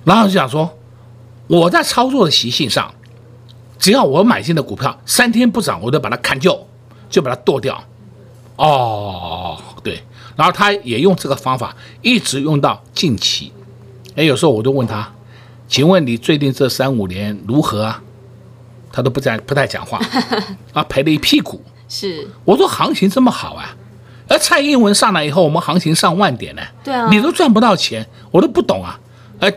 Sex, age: male, 50-69